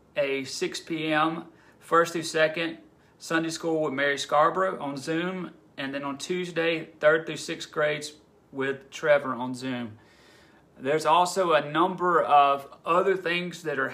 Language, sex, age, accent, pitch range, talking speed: English, male, 30-49, American, 135-165 Hz, 145 wpm